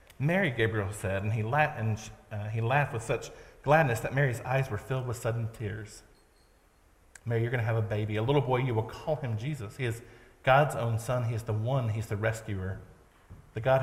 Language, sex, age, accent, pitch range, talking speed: English, male, 40-59, American, 110-130 Hz, 210 wpm